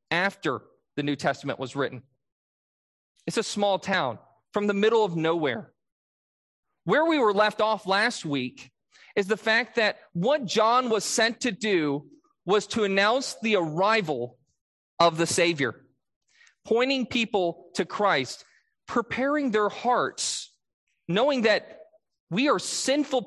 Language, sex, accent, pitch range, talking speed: English, male, American, 160-230 Hz, 135 wpm